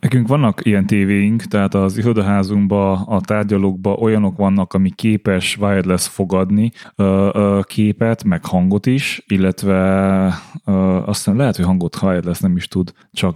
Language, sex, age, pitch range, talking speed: Hungarian, male, 20-39, 100-115 Hz, 155 wpm